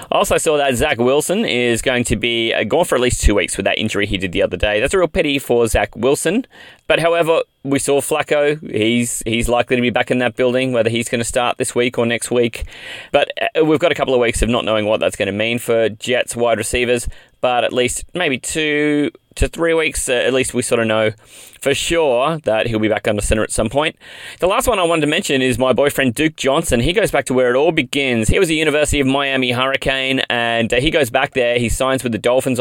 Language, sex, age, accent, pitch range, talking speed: English, male, 20-39, Australian, 115-135 Hz, 255 wpm